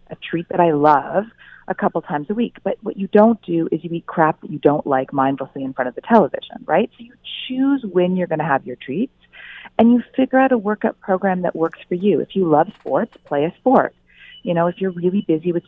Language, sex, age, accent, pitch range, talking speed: English, female, 40-59, American, 145-205 Hz, 250 wpm